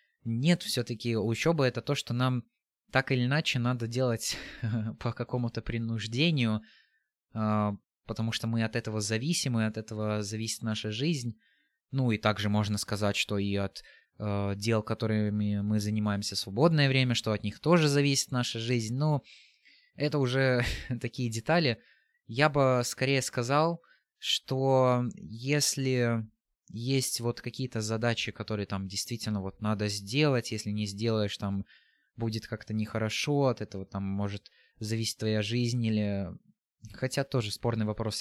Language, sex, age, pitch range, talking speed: Russian, male, 20-39, 105-125 Hz, 140 wpm